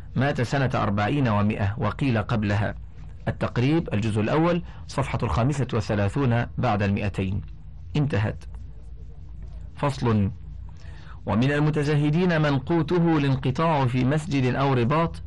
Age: 40-59